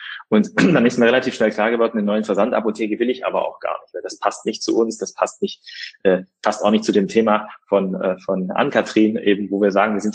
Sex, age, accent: male, 30-49, German